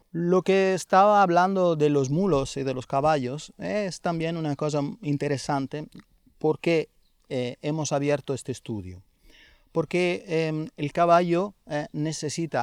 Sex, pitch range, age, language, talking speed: male, 140-180 Hz, 30-49, Spanish, 145 wpm